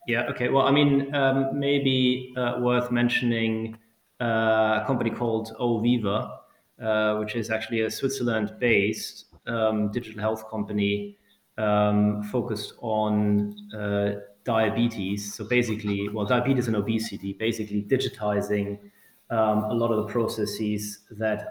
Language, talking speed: English, 125 wpm